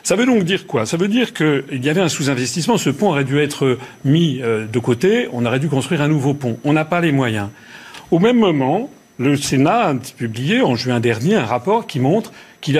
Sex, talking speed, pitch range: male, 230 wpm, 135-190 Hz